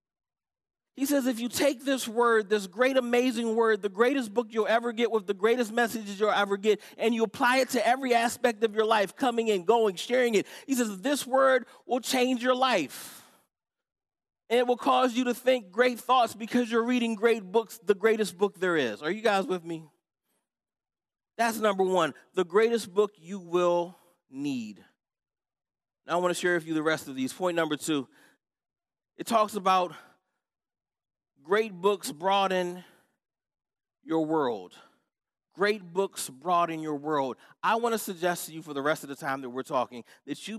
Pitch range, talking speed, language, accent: 170-230 Hz, 185 wpm, English, American